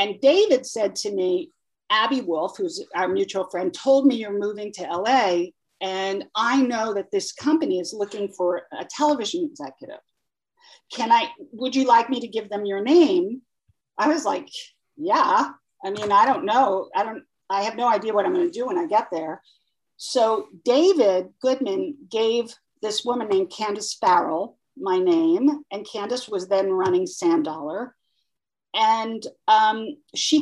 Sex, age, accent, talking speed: female, 50-69, American, 170 wpm